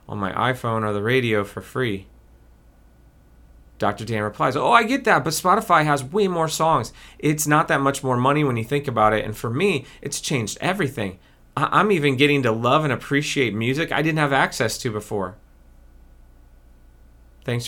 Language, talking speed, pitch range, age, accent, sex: English, 185 wpm, 80-135 Hz, 30-49, American, male